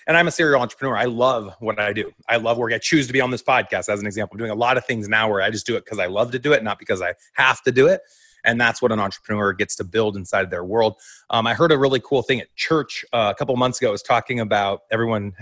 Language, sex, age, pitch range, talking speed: English, male, 30-49, 115-150 Hz, 305 wpm